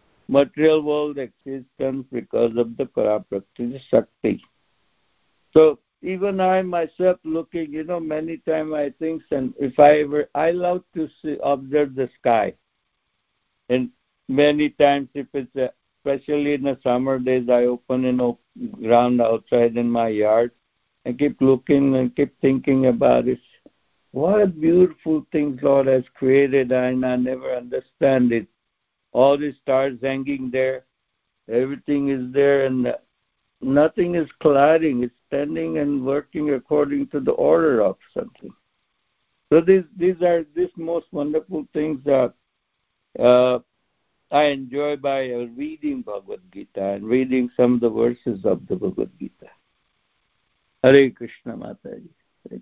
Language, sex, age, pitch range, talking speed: English, male, 60-79, 125-155 Hz, 145 wpm